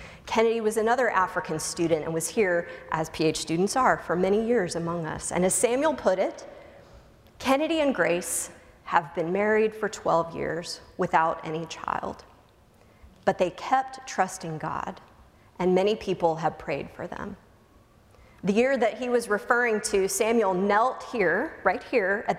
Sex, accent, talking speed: female, American, 160 wpm